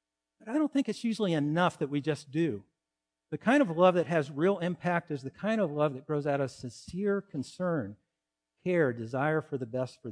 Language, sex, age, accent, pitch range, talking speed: English, male, 50-69, American, 125-180 Hz, 210 wpm